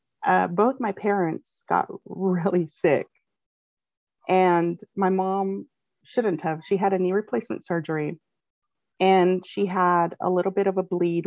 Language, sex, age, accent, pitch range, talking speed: English, female, 30-49, American, 165-195 Hz, 145 wpm